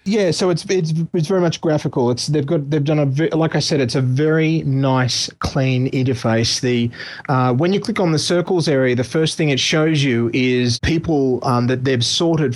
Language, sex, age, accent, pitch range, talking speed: English, male, 30-49, Australian, 125-150 Hz, 215 wpm